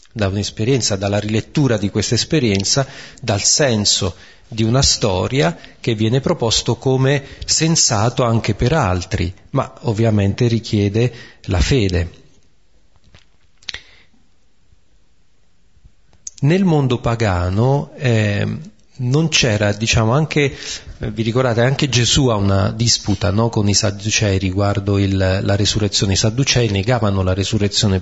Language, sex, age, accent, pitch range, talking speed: Italian, male, 40-59, native, 100-125 Hz, 115 wpm